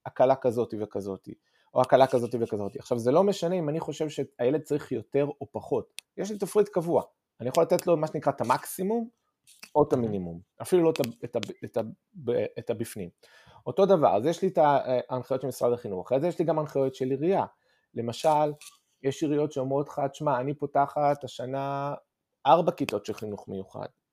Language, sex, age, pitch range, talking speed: Hebrew, male, 30-49, 125-170 Hz, 180 wpm